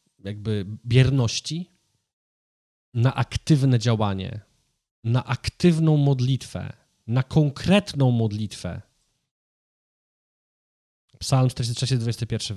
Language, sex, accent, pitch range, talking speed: Polish, male, native, 110-135 Hz, 65 wpm